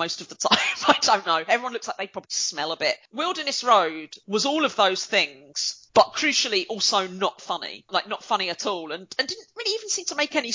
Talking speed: 235 wpm